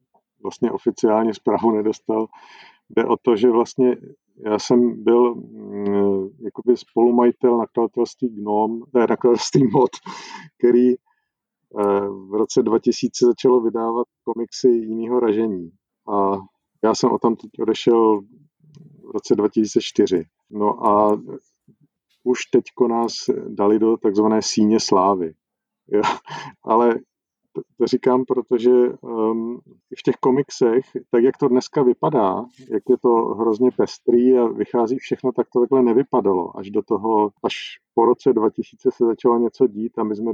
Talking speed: 130 wpm